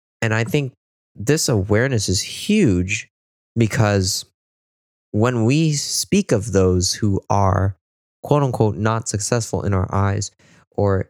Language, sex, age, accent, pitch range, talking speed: English, male, 20-39, American, 95-115 Hz, 120 wpm